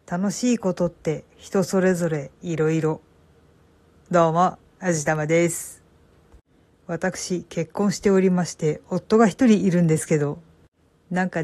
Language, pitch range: Japanese, 160-215 Hz